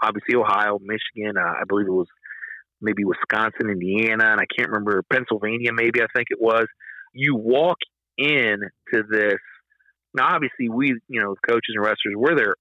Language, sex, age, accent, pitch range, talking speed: English, male, 40-59, American, 105-160 Hz, 170 wpm